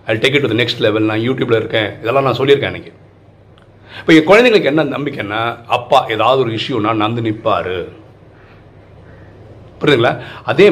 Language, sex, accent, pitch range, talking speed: Tamil, male, native, 110-160 Hz, 140 wpm